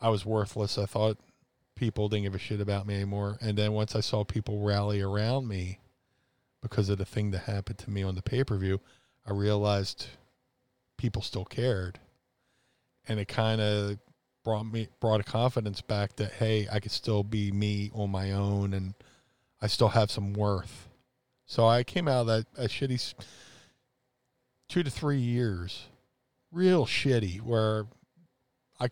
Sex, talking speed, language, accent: male, 165 wpm, English, American